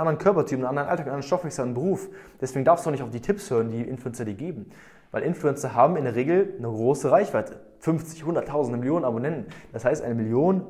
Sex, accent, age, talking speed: male, German, 20-39, 235 wpm